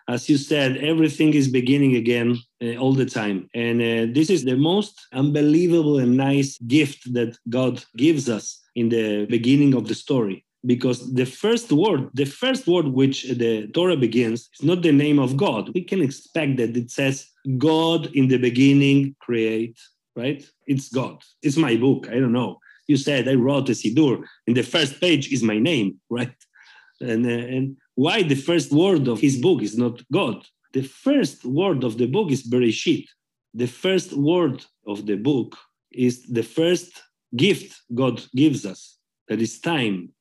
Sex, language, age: male, English, 40-59